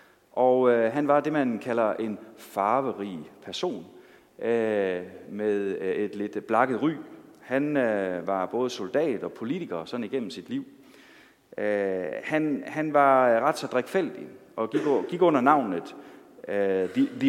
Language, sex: Danish, male